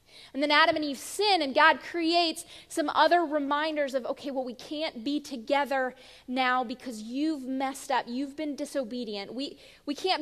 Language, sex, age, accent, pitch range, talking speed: English, female, 20-39, American, 260-310 Hz, 175 wpm